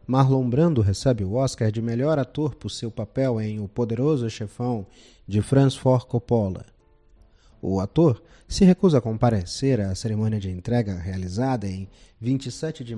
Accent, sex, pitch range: Brazilian, male, 105-140 Hz